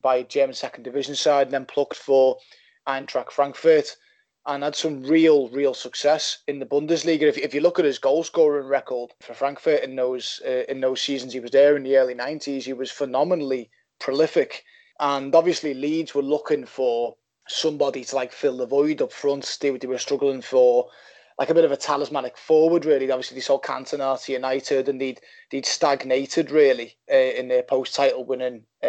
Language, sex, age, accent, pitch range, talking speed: English, male, 20-39, British, 135-160 Hz, 190 wpm